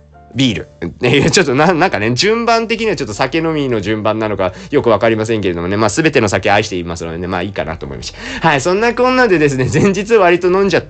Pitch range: 105-145 Hz